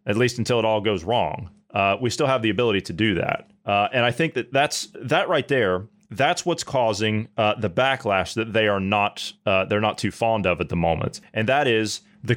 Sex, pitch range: male, 105-135 Hz